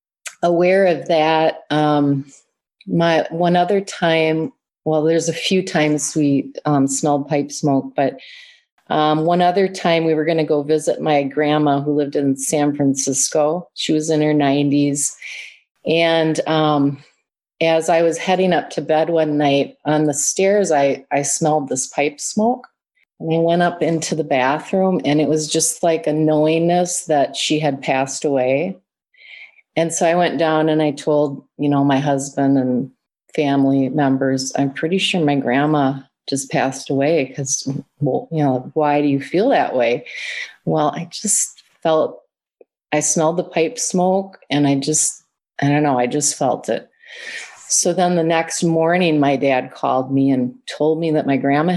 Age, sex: 30-49, female